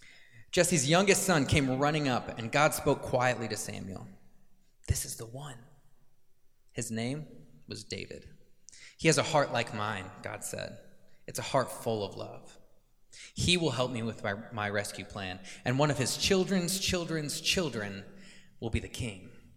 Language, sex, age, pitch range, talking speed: English, male, 20-39, 110-145 Hz, 165 wpm